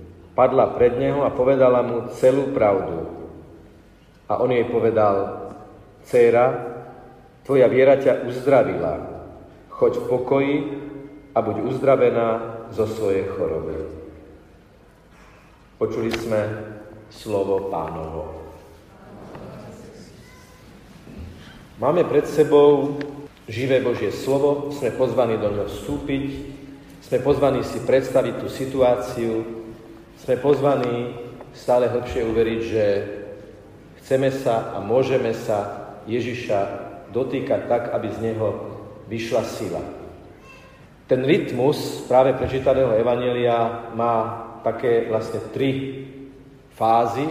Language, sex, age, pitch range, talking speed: Slovak, male, 40-59, 110-140 Hz, 95 wpm